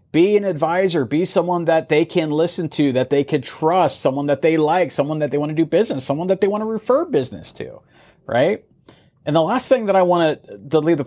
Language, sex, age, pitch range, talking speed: English, male, 30-49, 125-170 Hz, 245 wpm